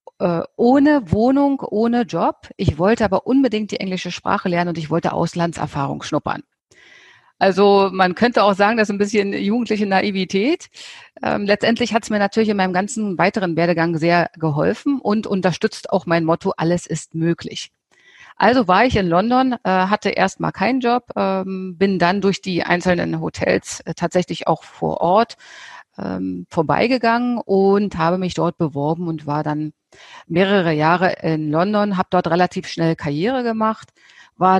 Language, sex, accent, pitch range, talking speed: German, female, German, 170-205 Hz, 160 wpm